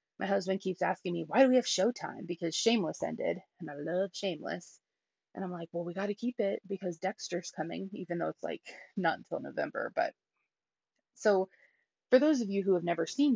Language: English